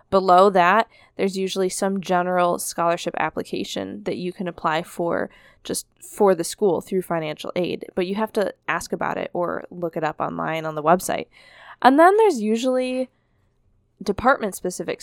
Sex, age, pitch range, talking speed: female, 10-29, 170-205 Hz, 160 wpm